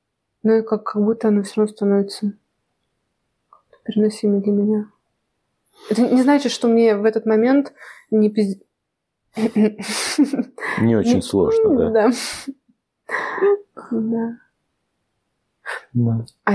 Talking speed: 95 wpm